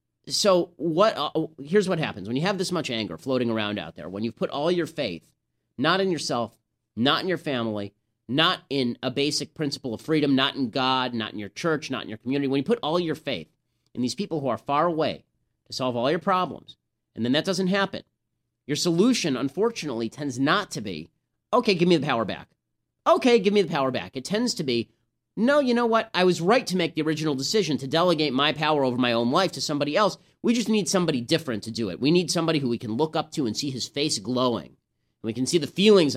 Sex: male